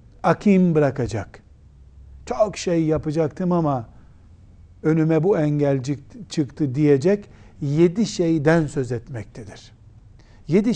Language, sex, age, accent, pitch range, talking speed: Turkish, male, 60-79, native, 125-175 Hz, 90 wpm